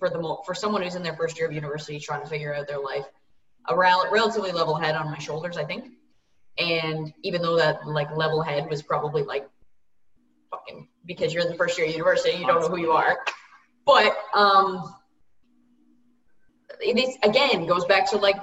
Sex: female